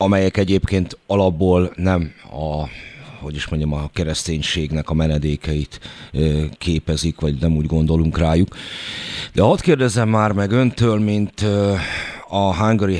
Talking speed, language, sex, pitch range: 125 wpm, Hungarian, male, 80-100 Hz